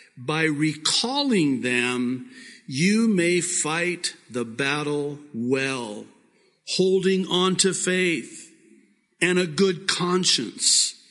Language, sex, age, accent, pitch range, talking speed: English, male, 50-69, American, 130-180 Hz, 90 wpm